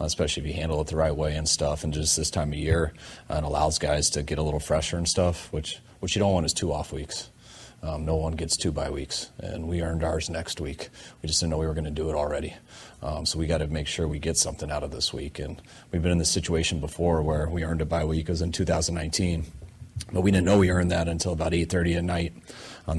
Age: 30-49